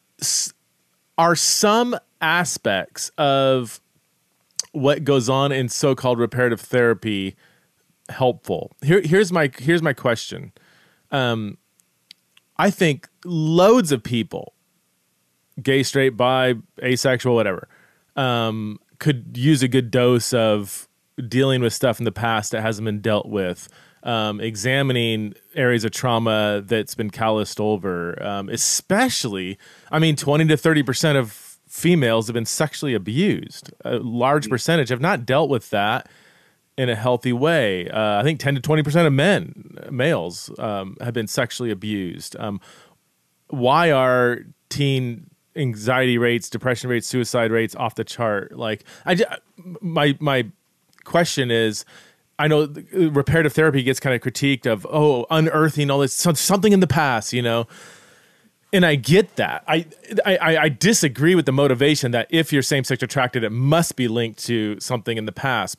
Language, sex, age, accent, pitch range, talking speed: English, male, 30-49, American, 115-155 Hz, 145 wpm